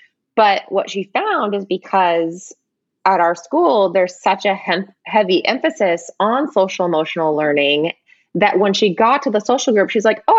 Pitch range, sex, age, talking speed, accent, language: 185-245 Hz, female, 20-39, 165 wpm, American, English